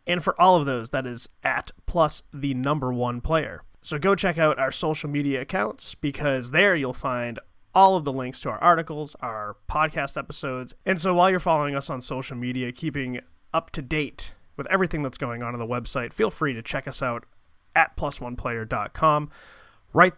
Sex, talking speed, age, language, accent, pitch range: male, 195 wpm, 30-49, English, American, 125-160 Hz